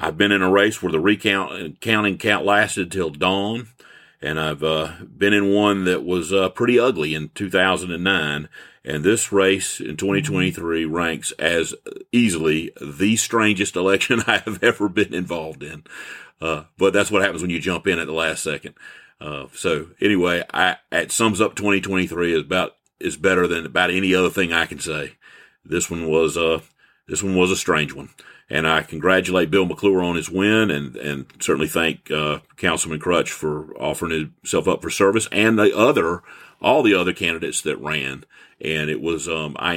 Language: English